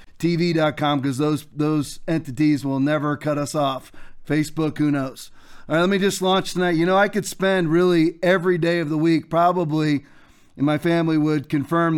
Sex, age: male, 40-59